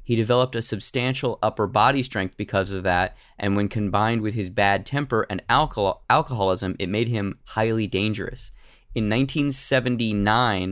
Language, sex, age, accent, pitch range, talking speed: English, male, 20-39, American, 105-130 Hz, 150 wpm